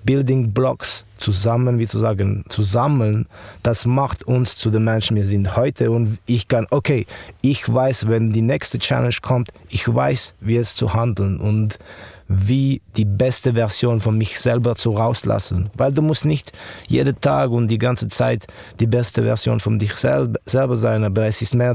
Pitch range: 105-125 Hz